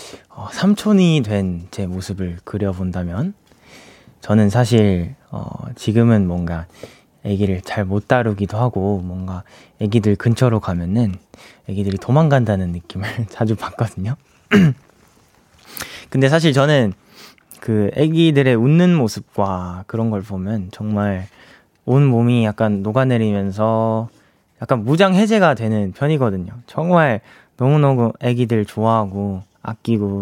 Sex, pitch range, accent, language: male, 100-135 Hz, native, Korean